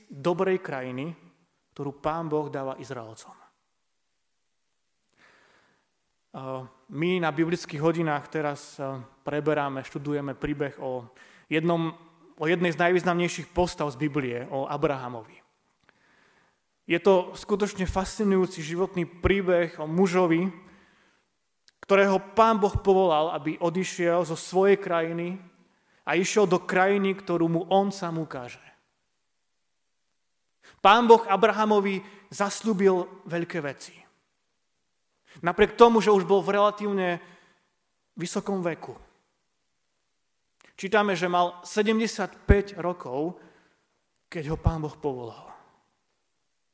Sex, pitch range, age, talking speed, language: male, 155-195 Hz, 30-49, 100 wpm, Slovak